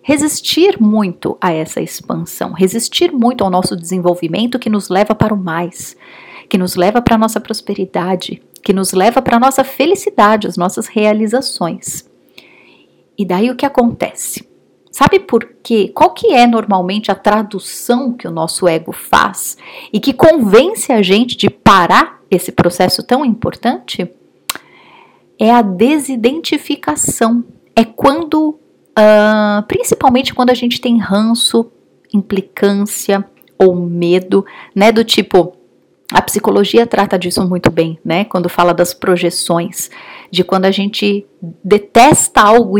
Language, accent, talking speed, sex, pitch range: Portuguese, Brazilian, 135 wpm, female, 190-245 Hz